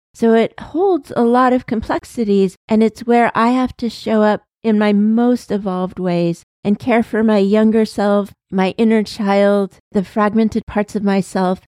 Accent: American